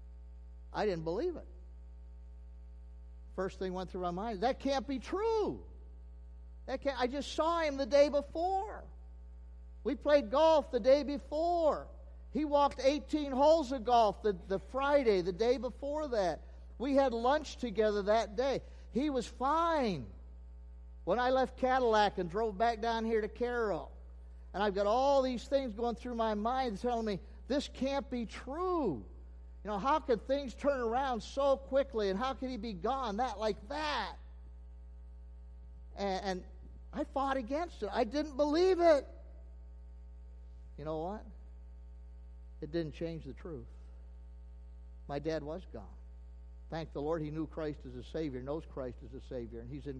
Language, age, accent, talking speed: English, 50-69, American, 160 wpm